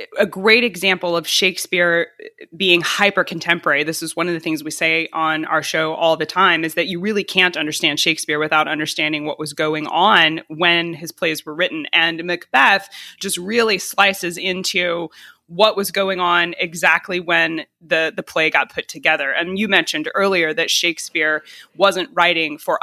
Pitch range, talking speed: 160-205 Hz, 175 wpm